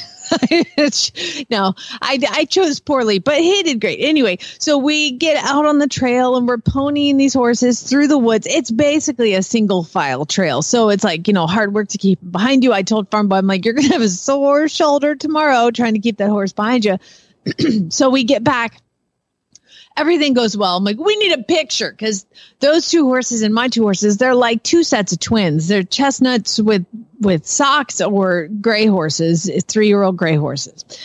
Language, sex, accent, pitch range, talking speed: English, female, American, 210-300 Hz, 195 wpm